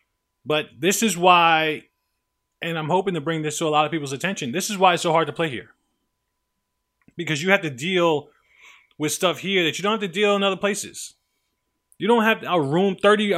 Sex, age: male, 20-39